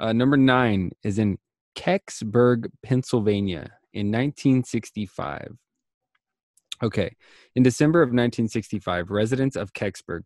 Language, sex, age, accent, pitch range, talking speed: English, male, 20-39, American, 100-125 Hz, 100 wpm